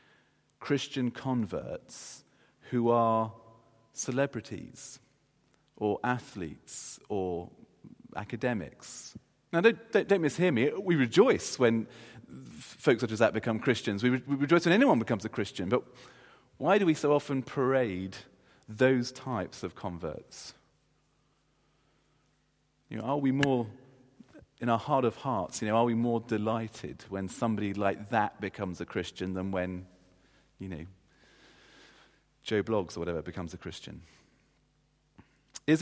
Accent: British